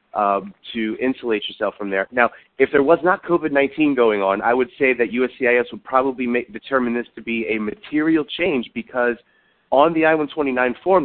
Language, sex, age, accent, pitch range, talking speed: English, male, 30-49, American, 110-135 Hz, 185 wpm